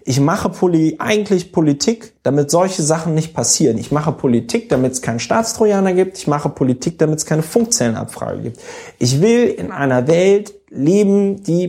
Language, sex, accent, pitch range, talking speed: German, male, German, 140-200 Hz, 165 wpm